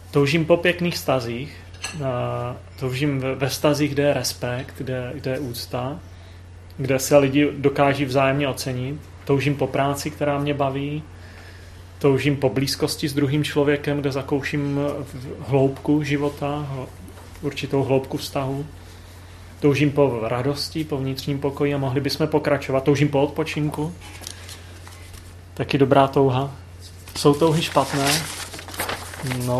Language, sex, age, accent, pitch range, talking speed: Czech, male, 30-49, native, 90-145 Hz, 120 wpm